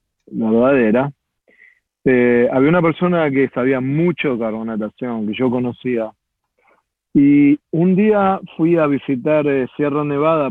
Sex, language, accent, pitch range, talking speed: male, Spanish, Argentinian, 125-165 Hz, 130 wpm